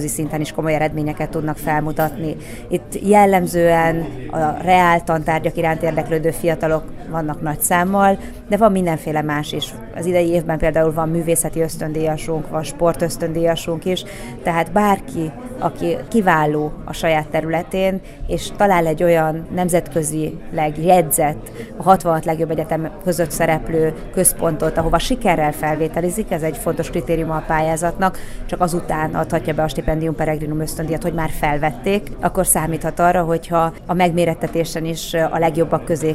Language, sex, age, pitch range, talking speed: Hungarian, female, 30-49, 160-175 Hz, 135 wpm